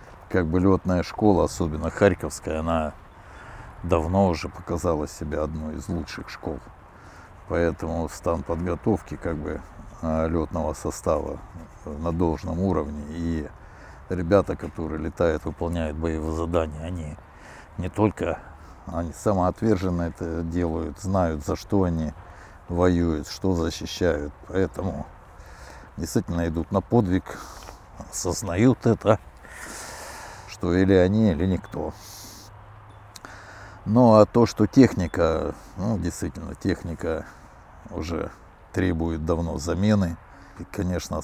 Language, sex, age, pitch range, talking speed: Ukrainian, male, 60-79, 80-95 Hz, 105 wpm